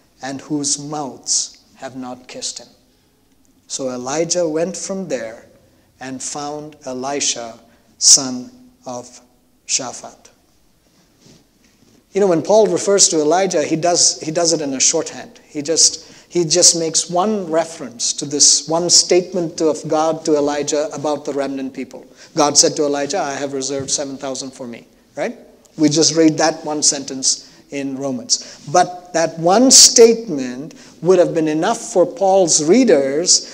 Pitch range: 145-200 Hz